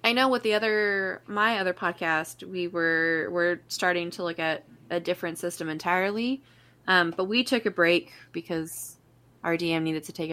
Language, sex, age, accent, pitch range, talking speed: English, female, 20-39, American, 155-185 Hz, 180 wpm